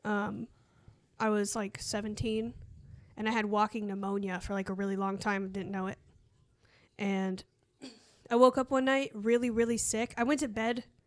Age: 10-29